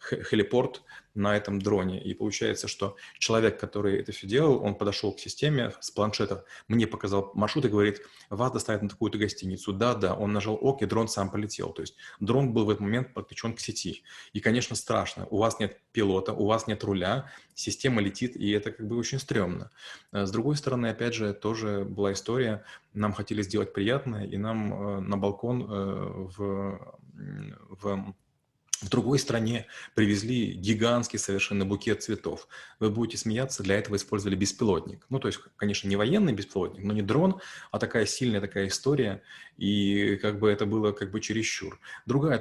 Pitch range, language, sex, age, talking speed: 100-115 Hz, Russian, male, 20-39, 175 wpm